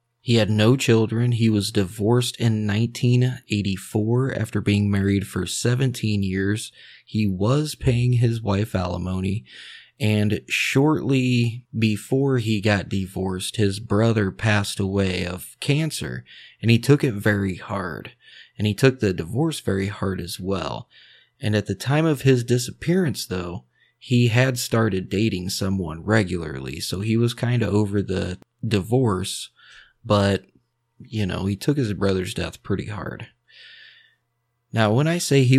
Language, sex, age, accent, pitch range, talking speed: English, male, 20-39, American, 100-125 Hz, 145 wpm